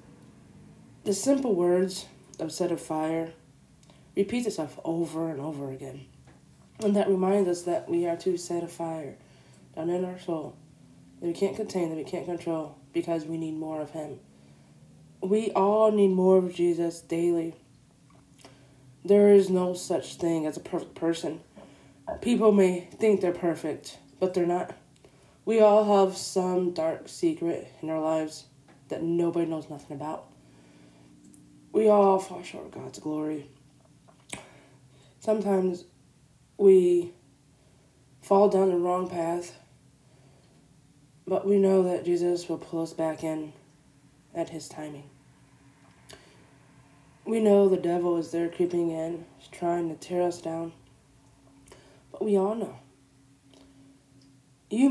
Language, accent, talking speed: English, American, 135 wpm